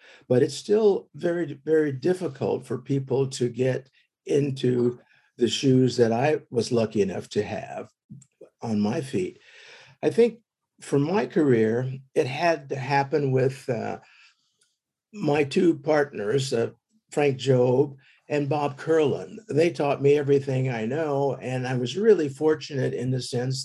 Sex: male